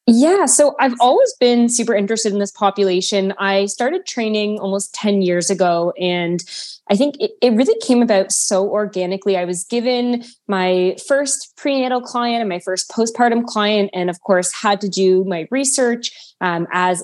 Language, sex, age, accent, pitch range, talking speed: English, female, 20-39, American, 180-225 Hz, 175 wpm